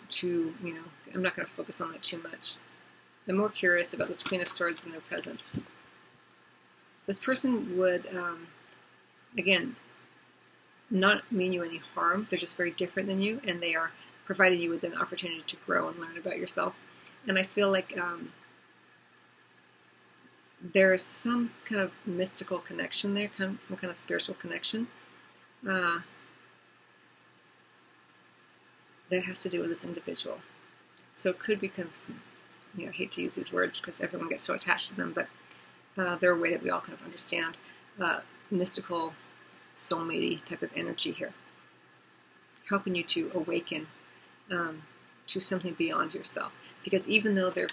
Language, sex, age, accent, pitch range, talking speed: English, female, 40-59, American, 170-195 Hz, 165 wpm